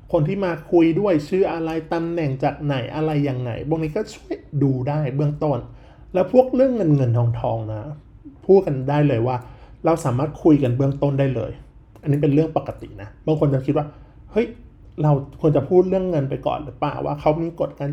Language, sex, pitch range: Thai, male, 120-155 Hz